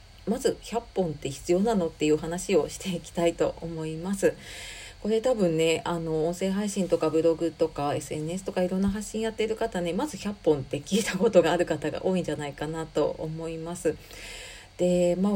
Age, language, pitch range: 40-59, Japanese, 160-225 Hz